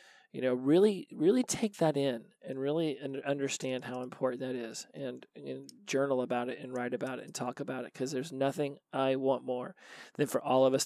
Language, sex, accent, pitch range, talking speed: English, male, American, 125-140 Hz, 210 wpm